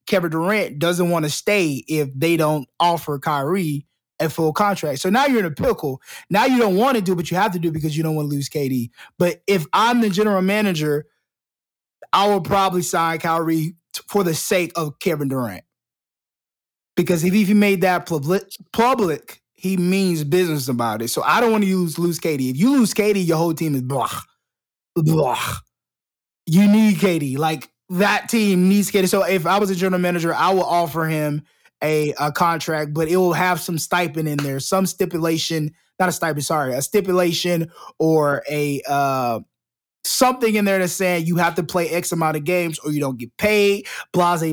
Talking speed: 200 wpm